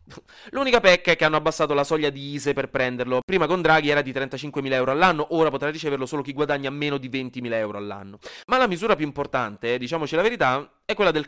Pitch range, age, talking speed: 125-175 Hz, 20-39, 230 wpm